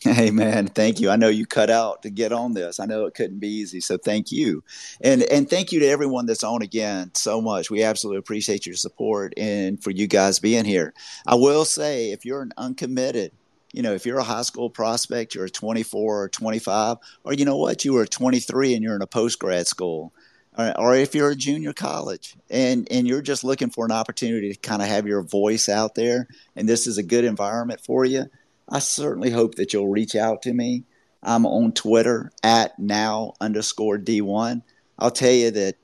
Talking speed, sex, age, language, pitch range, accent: 215 wpm, male, 50-69, English, 105-120 Hz, American